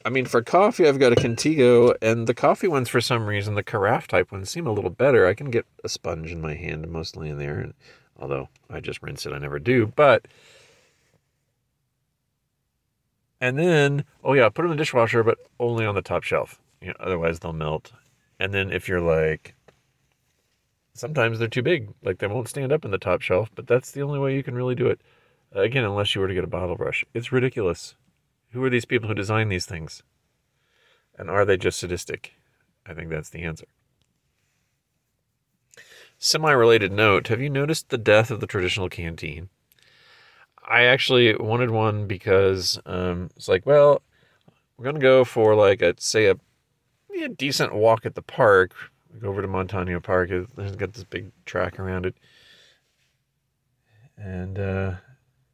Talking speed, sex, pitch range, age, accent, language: 185 wpm, male, 95-130 Hz, 40-59, American, English